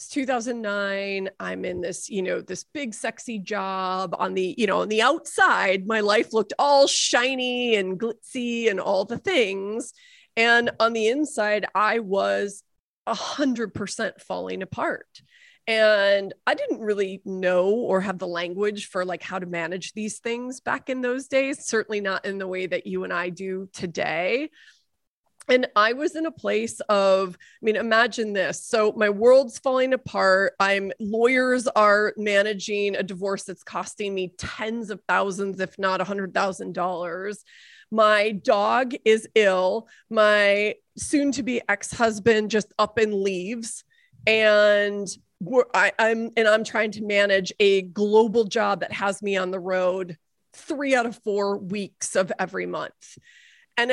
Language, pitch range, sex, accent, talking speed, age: English, 190-235 Hz, female, American, 160 wpm, 30-49